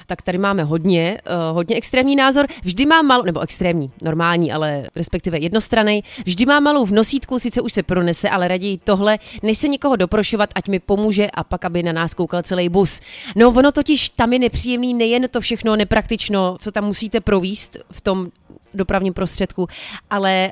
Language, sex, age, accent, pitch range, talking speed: Czech, female, 30-49, native, 180-235 Hz, 185 wpm